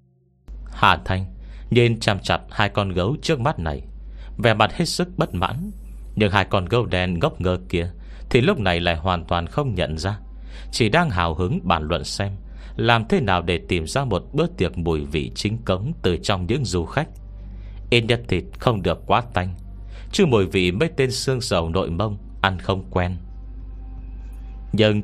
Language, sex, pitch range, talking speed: Vietnamese, male, 80-105 Hz, 190 wpm